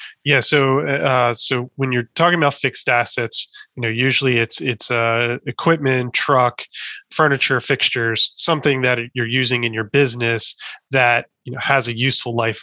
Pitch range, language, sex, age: 115-135 Hz, English, male, 20-39